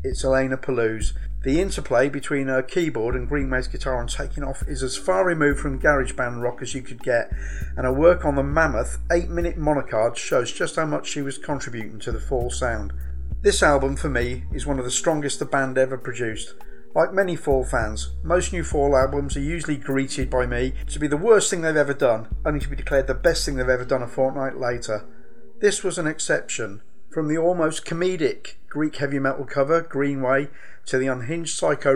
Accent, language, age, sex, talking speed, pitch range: British, English, 50-69, male, 205 wpm, 125-150 Hz